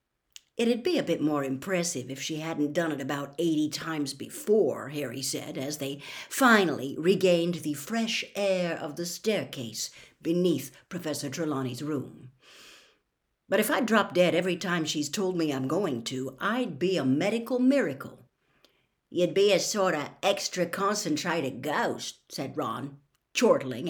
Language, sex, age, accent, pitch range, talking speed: English, female, 60-79, American, 140-205 Hz, 150 wpm